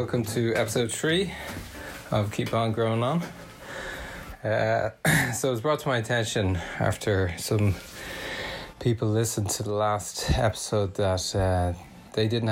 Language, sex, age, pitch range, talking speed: English, male, 20-39, 100-115 Hz, 140 wpm